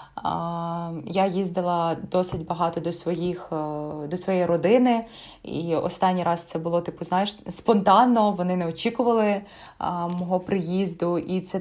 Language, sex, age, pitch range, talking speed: Ukrainian, female, 20-39, 170-210 Hz, 125 wpm